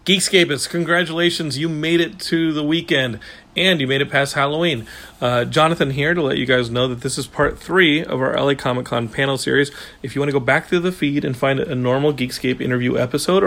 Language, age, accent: English, 40-59, American